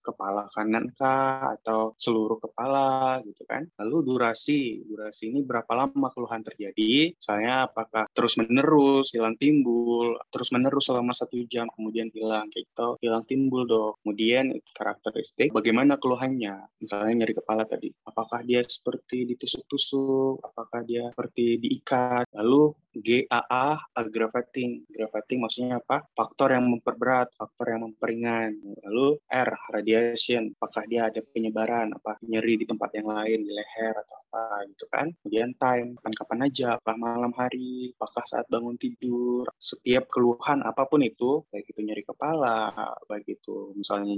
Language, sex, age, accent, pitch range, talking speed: Indonesian, male, 20-39, native, 110-125 Hz, 140 wpm